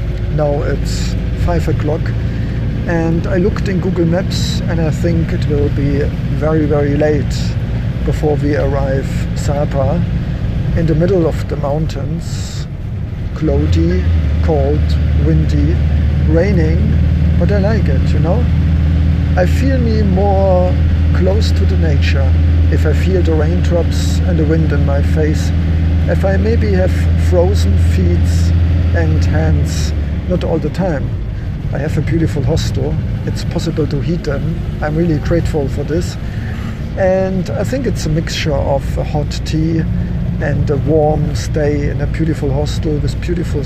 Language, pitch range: English, 80-135 Hz